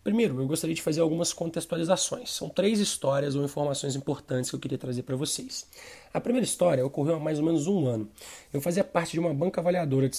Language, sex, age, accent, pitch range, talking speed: Portuguese, male, 20-39, Brazilian, 155-195 Hz, 220 wpm